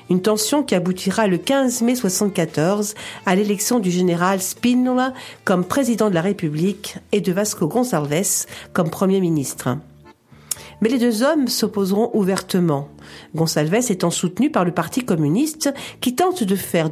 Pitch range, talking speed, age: 170-230 Hz, 150 wpm, 50-69